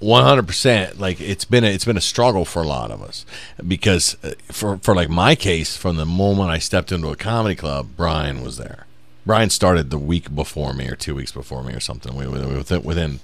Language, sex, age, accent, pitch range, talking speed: English, male, 40-59, American, 70-95 Hz, 235 wpm